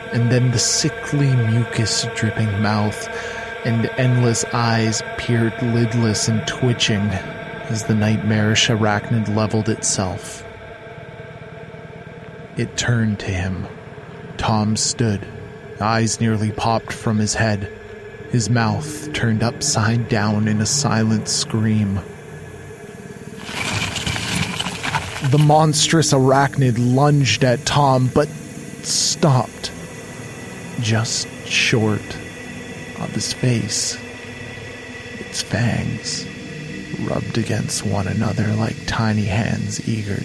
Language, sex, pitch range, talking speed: English, male, 110-125 Hz, 95 wpm